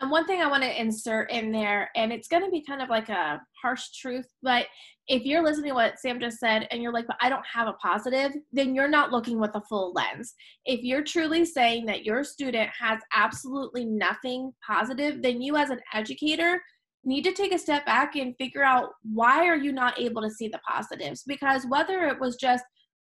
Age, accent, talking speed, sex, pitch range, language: 20-39, American, 215 wpm, female, 225-275 Hz, English